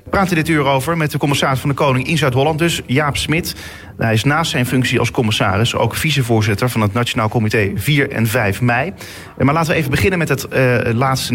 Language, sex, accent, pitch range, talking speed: Dutch, male, Dutch, 115-145 Hz, 220 wpm